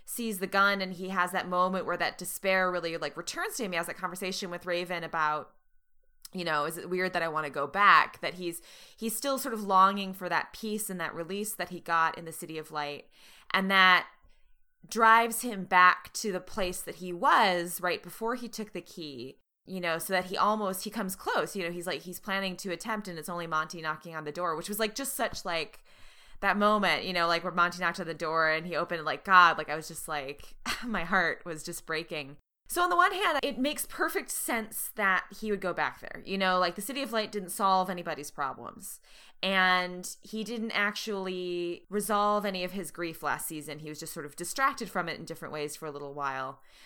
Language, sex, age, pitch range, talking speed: English, female, 20-39, 165-210 Hz, 230 wpm